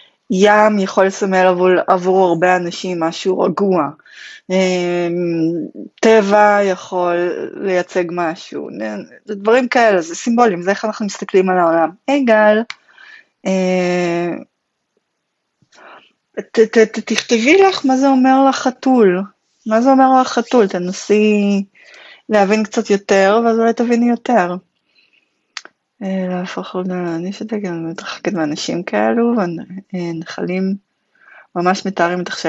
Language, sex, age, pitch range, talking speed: Hebrew, female, 20-39, 175-225 Hz, 110 wpm